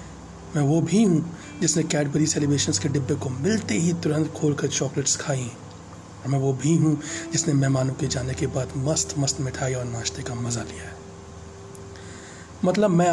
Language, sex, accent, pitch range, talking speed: Hindi, male, native, 105-160 Hz, 175 wpm